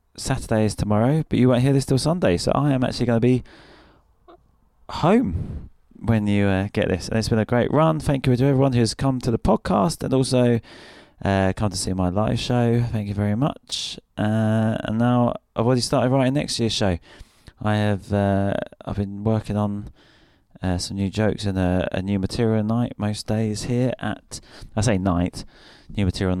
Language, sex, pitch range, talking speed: English, male, 100-125 Hz, 200 wpm